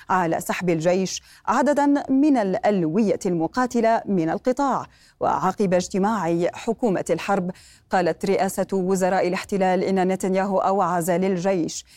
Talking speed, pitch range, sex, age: 105 wpm, 180-230 Hz, female, 30-49